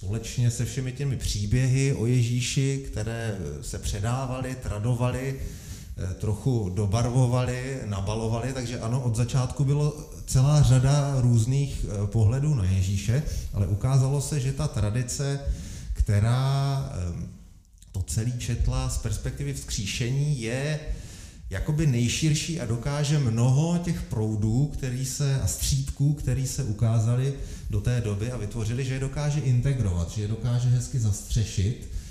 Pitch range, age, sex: 95-130 Hz, 30-49, male